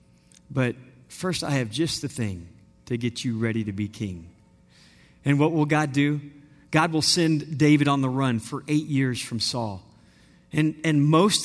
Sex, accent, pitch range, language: male, American, 115-160 Hz, English